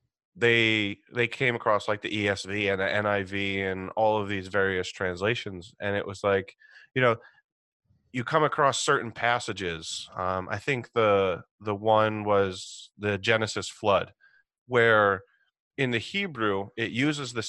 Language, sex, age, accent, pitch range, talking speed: English, male, 30-49, American, 100-120 Hz, 150 wpm